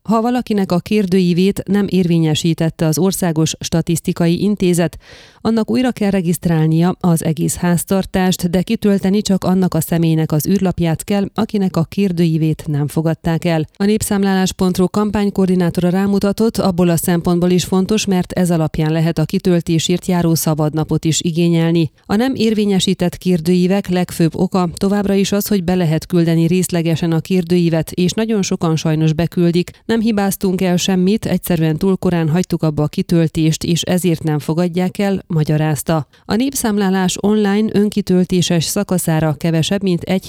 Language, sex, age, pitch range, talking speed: Hungarian, female, 30-49, 165-195 Hz, 145 wpm